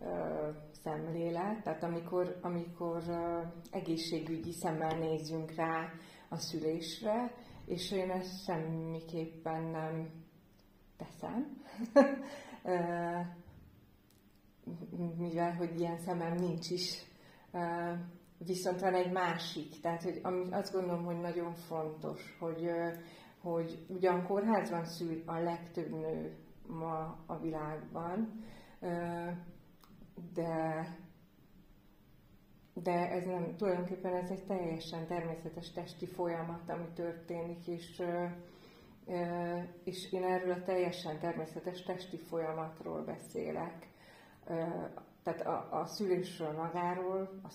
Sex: female